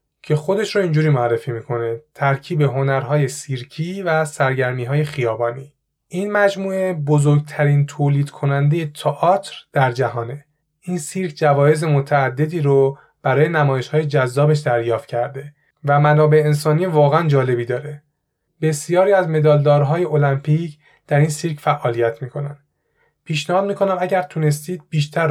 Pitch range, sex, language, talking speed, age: 140-160 Hz, male, Persian, 120 wpm, 30-49